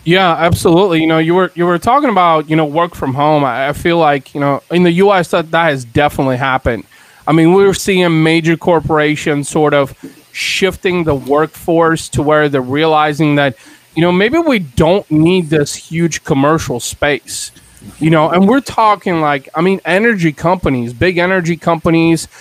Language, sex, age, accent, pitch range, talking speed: English, male, 30-49, American, 155-195 Hz, 185 wpm